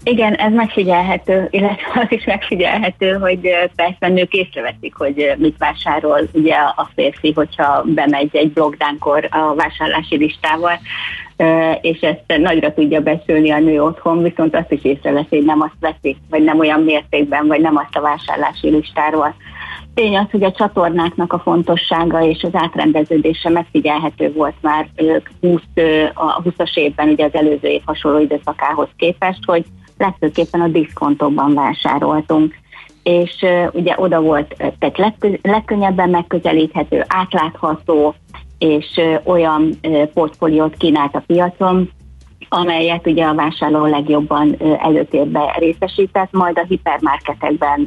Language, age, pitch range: Hungarian, 30-49, 150-180 Hz